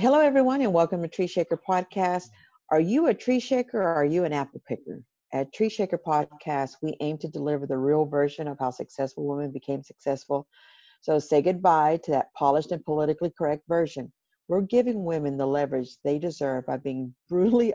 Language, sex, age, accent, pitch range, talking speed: English, female, 50-69, American, 145-210 Hz, 190 wpm